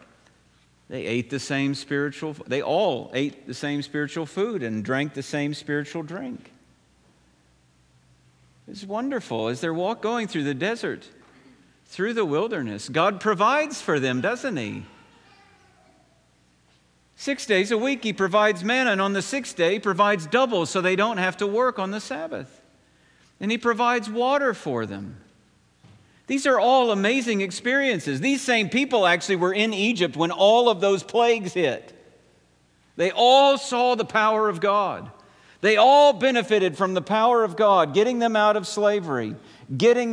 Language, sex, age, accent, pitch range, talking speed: English, male, 50-69, American, 145-230 Hz, 155 wpm